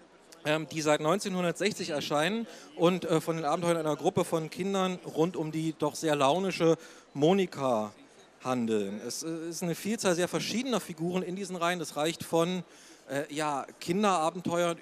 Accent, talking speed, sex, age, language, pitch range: German, 140 wpm, male, 40-59, German, 155-185 Hz